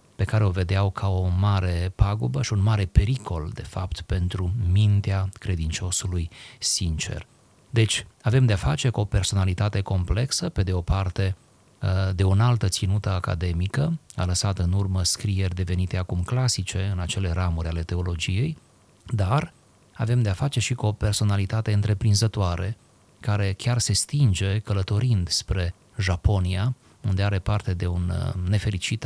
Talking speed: 145 wpm